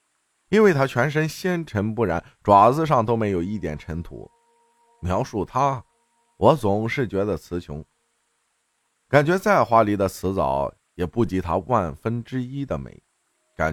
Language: Chinese